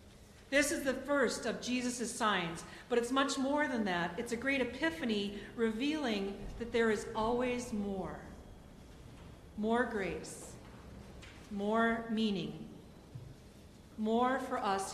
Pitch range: 195-245 Hz